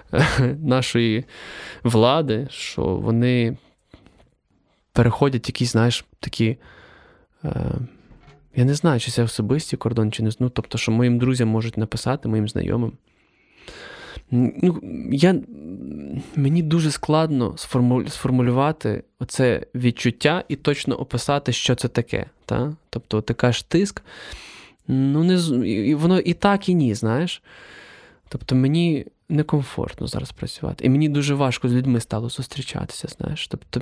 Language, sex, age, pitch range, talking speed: Ukrainian, male, 20-39, 115-150 Hz, 120 wpm